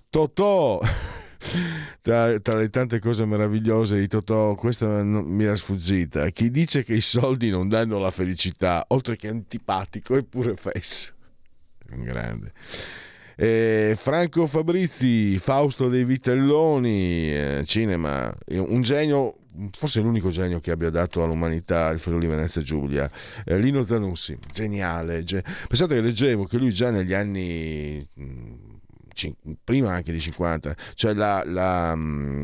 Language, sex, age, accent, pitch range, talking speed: Italian, male, 50-69, native, 85-110 Hz, 125 wpm